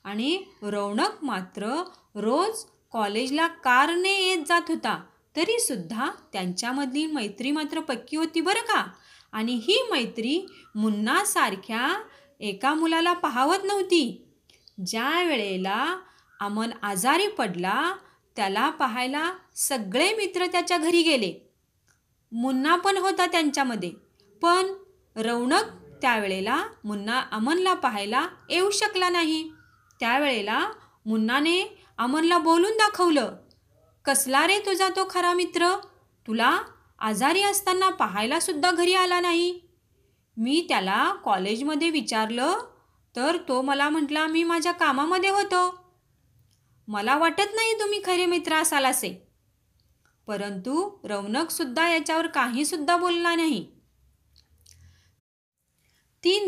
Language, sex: Marathi, female